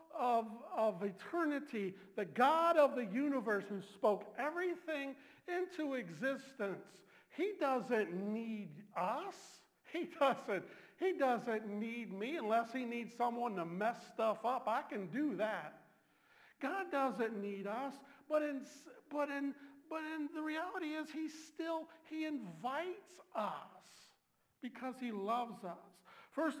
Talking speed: 130 wpm